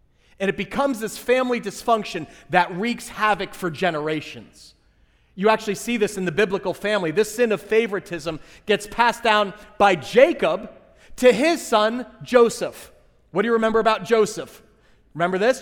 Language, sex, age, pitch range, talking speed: English, male, 30-49, 175-220 Hz, 155 wpm